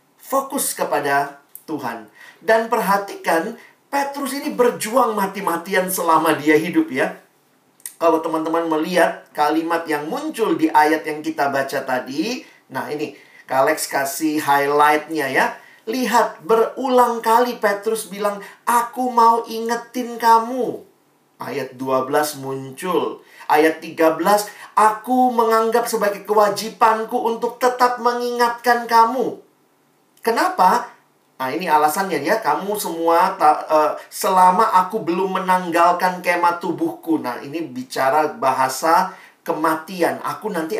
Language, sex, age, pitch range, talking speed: Indonesian, male, 40-59, 160-235 Hz, 110 wpm